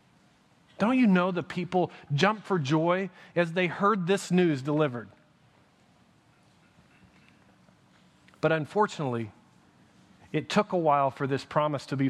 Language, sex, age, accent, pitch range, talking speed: English, male, 40-59, American, 145-195 Hz, 125 wpm